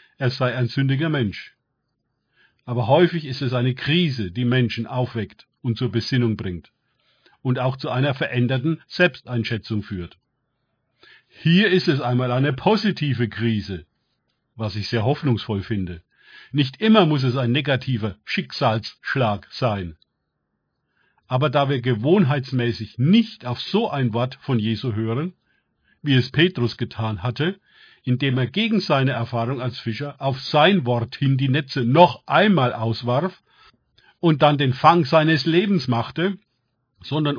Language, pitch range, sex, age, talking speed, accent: German, 120-150 Hz, male, 50-69, 140 wpm, German